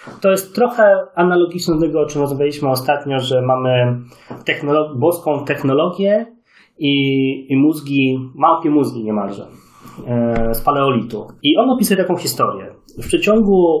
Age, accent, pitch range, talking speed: 30-49, Polish, 125-155 Hz, 130 wpm